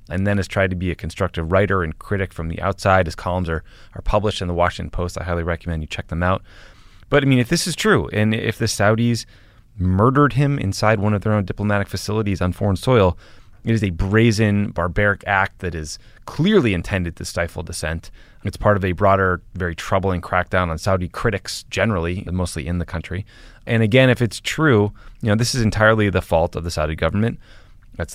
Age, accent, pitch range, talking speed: 20-39, American, 90-110 Hz, 210 wpm